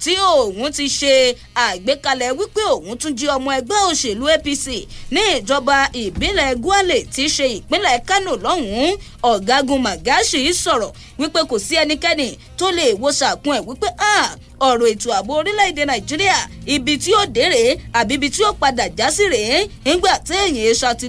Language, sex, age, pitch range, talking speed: English, female, 30-49, 265-385 Hz, 170 wpm